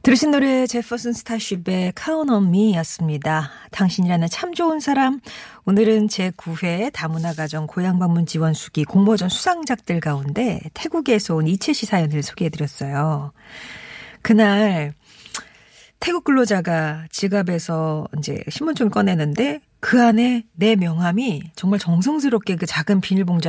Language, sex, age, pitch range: Korean, female, 40-59, 160-220 Hz